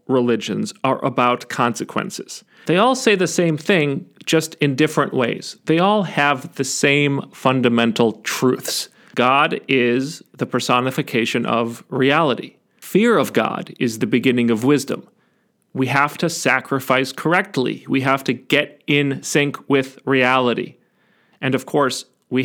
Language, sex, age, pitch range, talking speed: English, male, 40-59, 120-165 Hz, 140 wpm